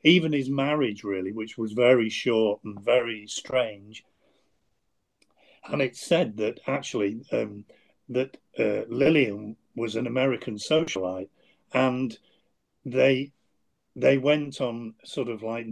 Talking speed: 120 wpm